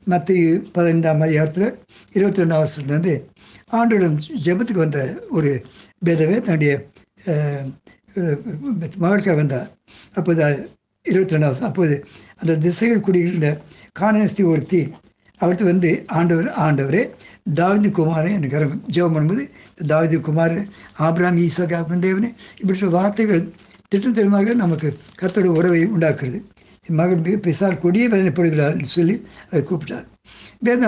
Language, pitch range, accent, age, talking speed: Tamil, 160-200 Hz, native, 60-79, 100 wpm